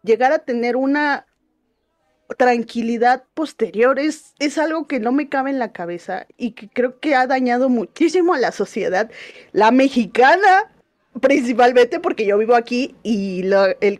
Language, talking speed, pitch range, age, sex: Spanish, 150 wpm, 220-285 Hz, 20-39, female